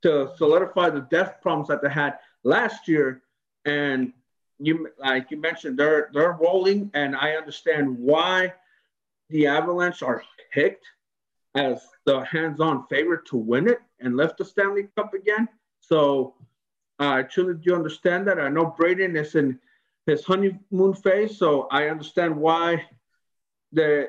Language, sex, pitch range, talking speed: English, male, 145-190 Hz, 145 wpm